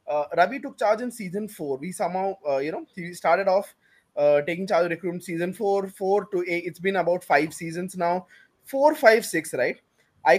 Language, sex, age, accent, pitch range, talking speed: English, male, 20-39, Indian, 175-240 Hz, 210 wpm